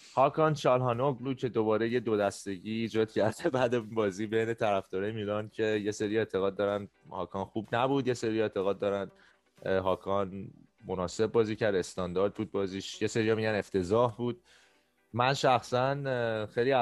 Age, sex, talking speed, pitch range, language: 20-39, male, 155 wpm, 95-120 Hz, Persian